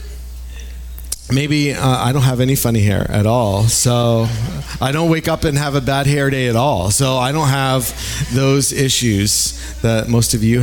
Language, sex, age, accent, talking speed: English, male, 40-59, American, 185 wpm